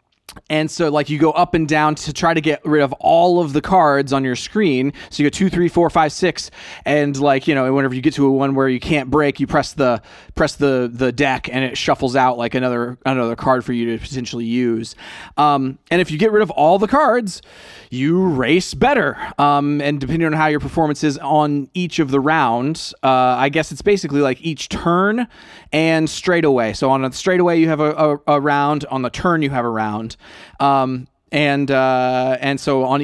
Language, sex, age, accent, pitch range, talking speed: English, male, 30-49, American, 135-160 Hz, 225 wpm